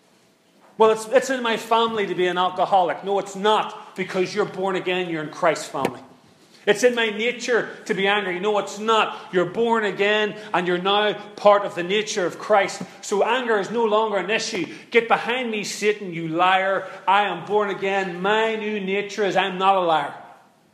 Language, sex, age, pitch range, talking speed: English, male, 40-59, 170-210 Hz, 195 wpm